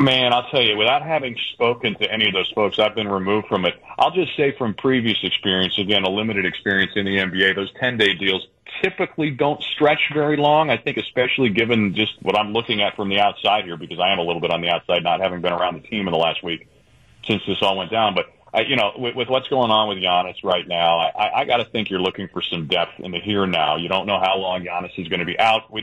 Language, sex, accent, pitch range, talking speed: English, male, American, 95-115 Hz, 265 wpm